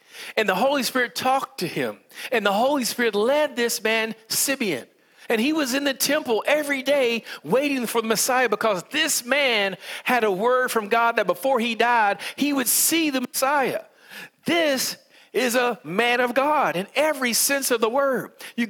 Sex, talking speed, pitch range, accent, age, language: male, 185 wpm, 215-275 Hz, American, 40-59, English